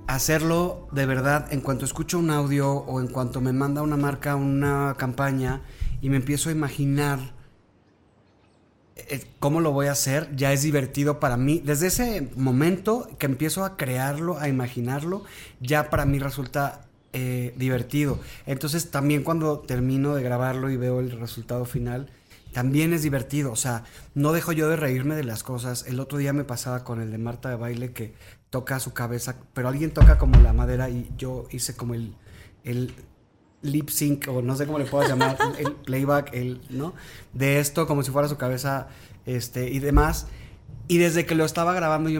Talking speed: 185 wpm